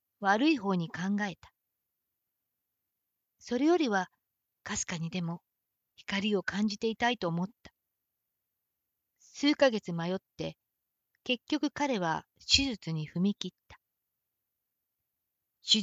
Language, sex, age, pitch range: Japanese, female, 40-59, 175-235 Hz